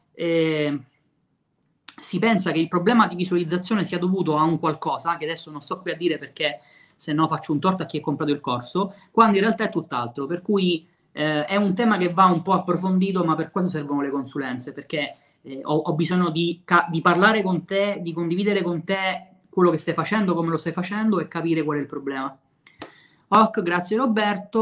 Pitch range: 150-190 Hz